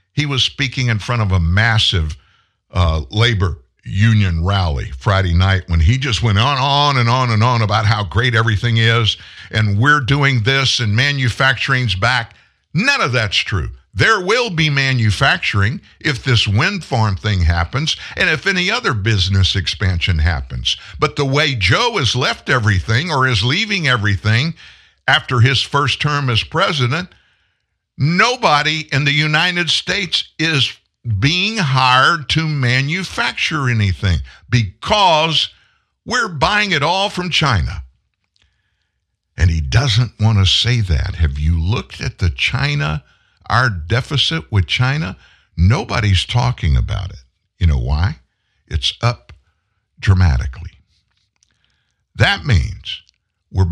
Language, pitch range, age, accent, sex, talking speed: English, 95-135 Hz, 50-69, American, male, 135 wpm